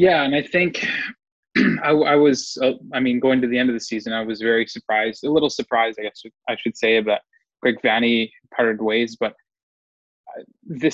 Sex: male